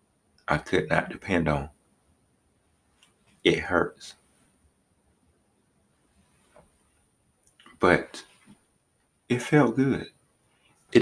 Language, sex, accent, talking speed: English, male, American, 65 wpm